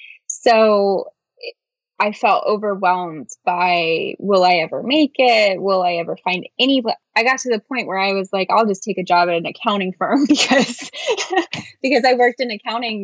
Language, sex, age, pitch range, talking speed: English, female, 10-29, 190-230 Hz, 180 wpm